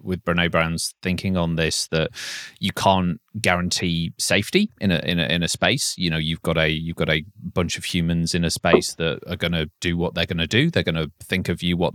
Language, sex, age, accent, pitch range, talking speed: English, male, 30-49, British, 85-95 Hz, 245 wpm